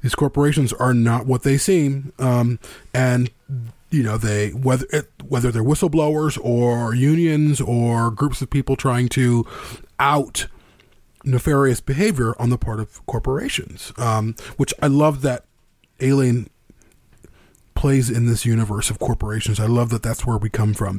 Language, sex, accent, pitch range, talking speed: English, male, American, 115-140 Hz, 150 wpm